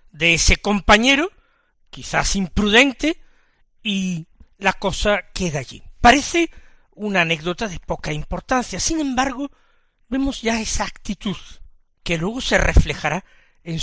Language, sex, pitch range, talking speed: Spanish, male, 165-235 Hz, 115 wpm